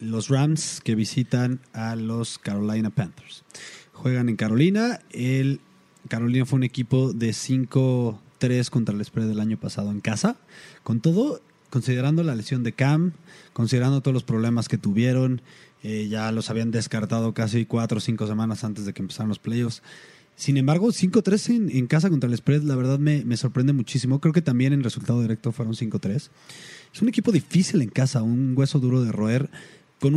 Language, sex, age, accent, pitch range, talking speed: Spanish, male, 20-39, Mexican, 110-150 Hz, 175 wpm